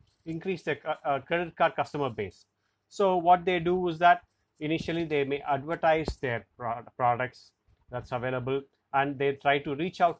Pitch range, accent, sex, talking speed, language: 130-165 Hz, Indian, male, 160 wpm, English